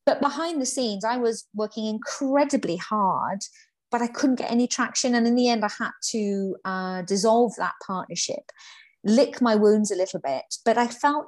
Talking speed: 180 wpm